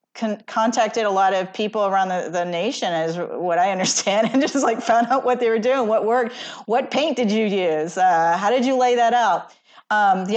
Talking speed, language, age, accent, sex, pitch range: 225 wpm, English, 40-59, American, female, 190-240 Hz